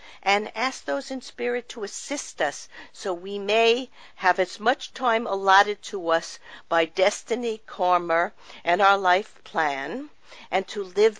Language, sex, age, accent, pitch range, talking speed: English, female, 50-69, American, 175-220 Hz, 150 wpm